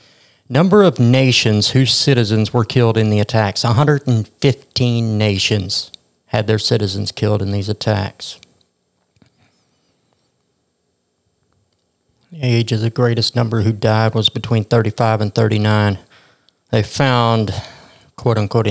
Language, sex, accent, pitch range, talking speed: English, male, American, 105-120 Hz, 110 wpm